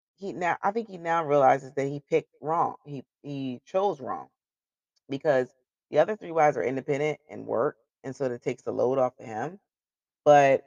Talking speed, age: 190 wpm, 30-49